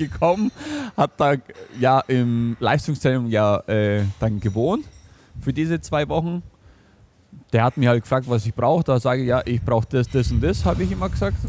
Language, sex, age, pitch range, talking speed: German, male, 20-39, 105-140 Hz, 190 wpm